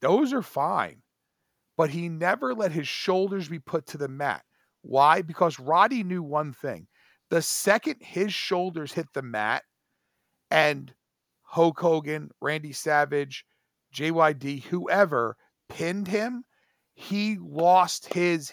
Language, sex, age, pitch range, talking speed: English, male, 40-59, 155-195 Hz, 125 wpm